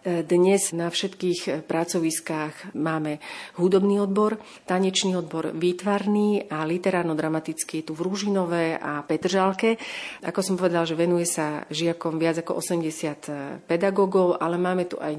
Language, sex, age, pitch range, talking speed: Slovak, female, 40-59, 155-180 Hz, 130 wpm